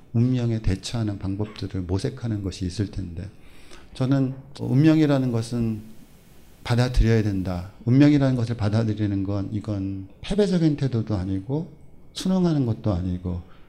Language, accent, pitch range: Korean, native, 95-120 Hz